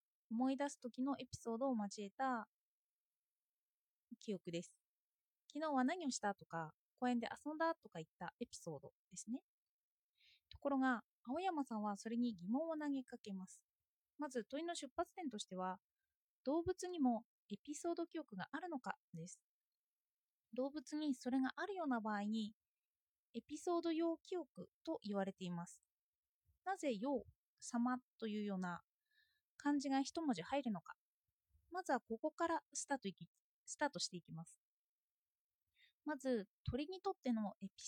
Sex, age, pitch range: female, 20-39, 210-305 Hz